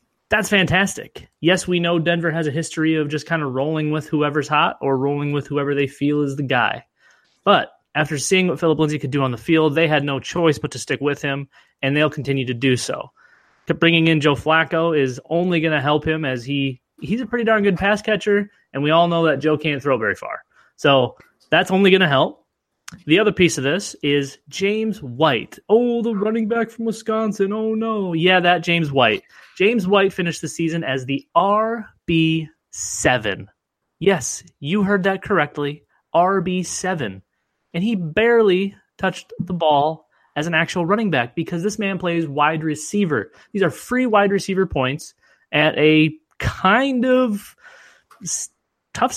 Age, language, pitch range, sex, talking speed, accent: 20-39, English, 145-195 Hz, male, 185 wpm, American